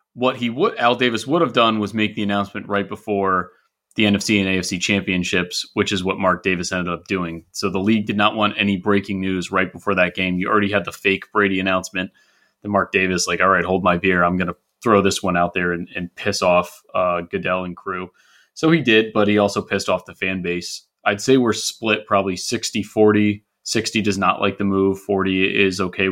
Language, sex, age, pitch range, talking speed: English, male, 30-49, 95-110 Hz, 225 wpm